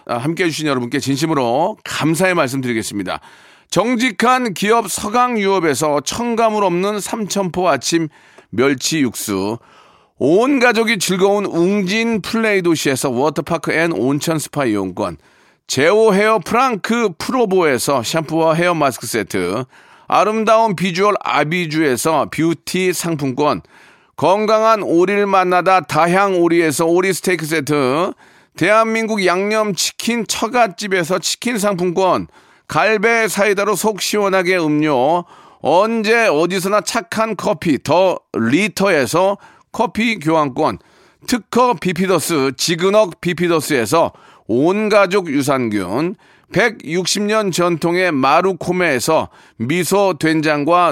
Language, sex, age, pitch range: Korean, male, 40-59, 160-215 Hz